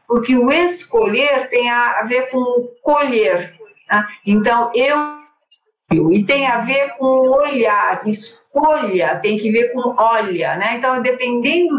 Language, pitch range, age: Portuguese, 205-275 Hz, 50-69